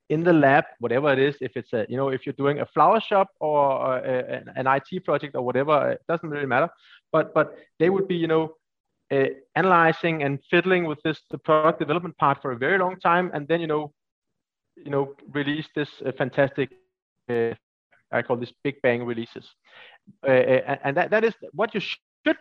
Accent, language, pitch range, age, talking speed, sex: Danish, English, 140-185 Hz, 30-49, 205 wpm, male